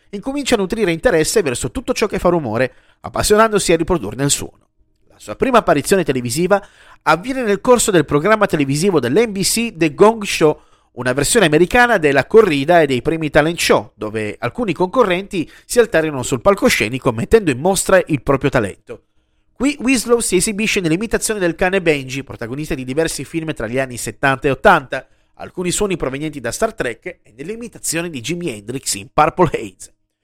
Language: Italian